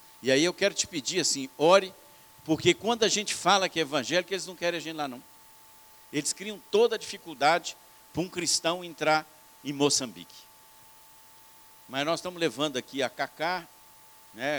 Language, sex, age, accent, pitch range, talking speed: Portuguese, male, 60-79, Brazilian, 125-165 Hz, 175 wpm